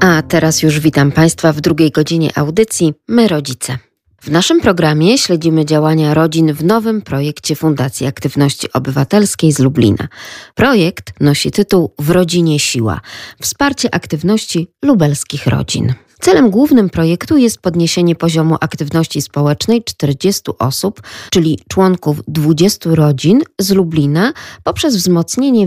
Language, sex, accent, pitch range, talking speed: Polish, female, native, 145-185 Hz, 125 wpm